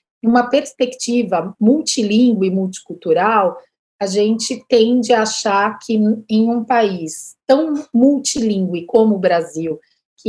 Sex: female